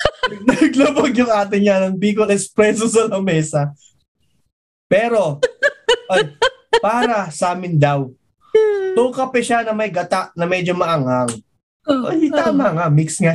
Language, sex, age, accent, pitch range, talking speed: English, male, 20-39, Filipino, 165-220 Hz, 110 wpm